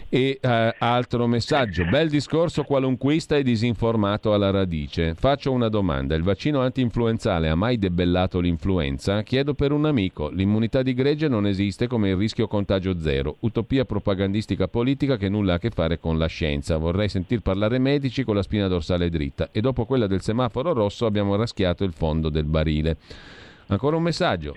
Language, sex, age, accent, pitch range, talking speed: Italian, male, 40-59, native, 90-120 Hz, 175 wpm